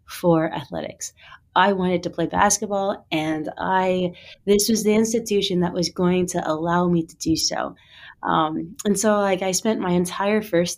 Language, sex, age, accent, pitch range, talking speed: English, female, 20-39, American, 160-200 Hz, 175 wpm